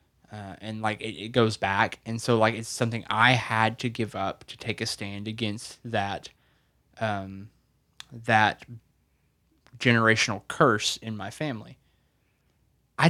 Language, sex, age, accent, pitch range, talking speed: English, male, 20-39, American, 110-135 Hz, 140 wpm